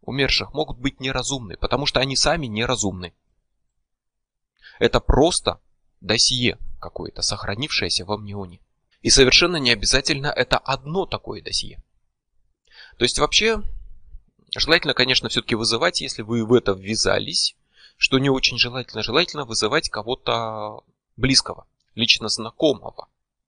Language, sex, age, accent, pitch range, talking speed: Russian, male, 20-39, native, 110-135 Hz, 120 wpm